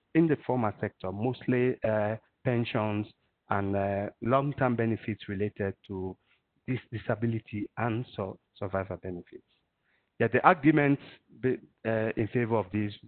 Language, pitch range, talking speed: English, 100-125 Hz, 110 wpm